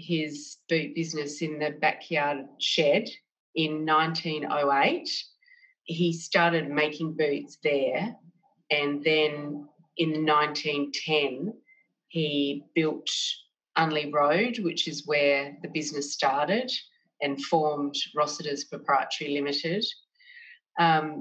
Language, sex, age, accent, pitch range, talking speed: English, female, 30-49, Australian, 145-170 Hz, 95 wpm